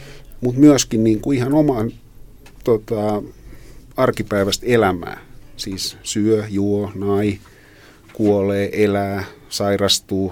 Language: Finnish